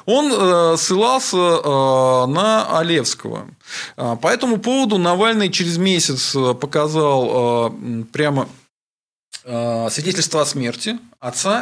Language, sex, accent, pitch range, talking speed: Russian, male, native, 135-195 Hz, 85 wpm